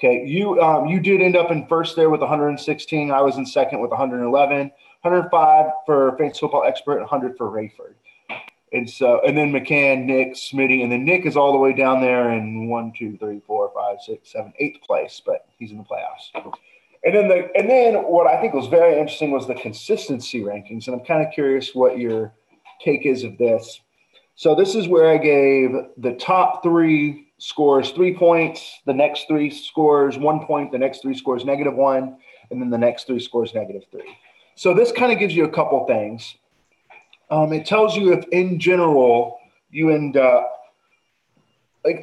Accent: American